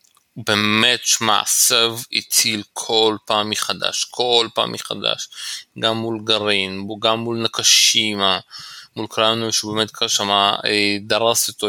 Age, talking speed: 20-39, 125 wpm